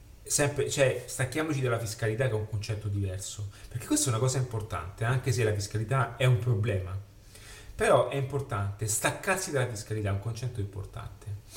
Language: Italian